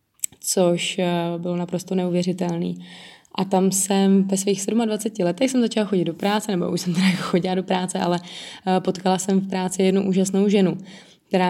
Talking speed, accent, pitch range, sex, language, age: 165 wpm, native, 180-195 Hz, female, Czech, 20-39